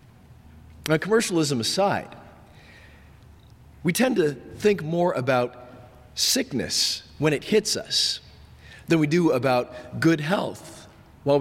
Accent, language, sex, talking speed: American, English, male, 110 wpm